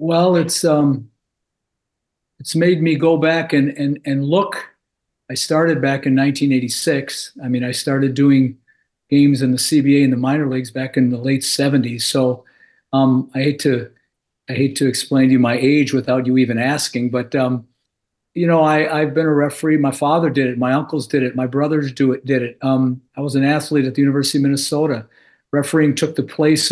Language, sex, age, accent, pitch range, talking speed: English, male, 50-69, American, 130-155 Hz, 200 wpm